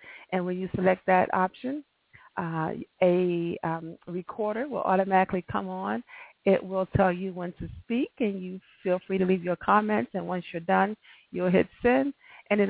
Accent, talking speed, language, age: American, 180 wpm, English, 40-59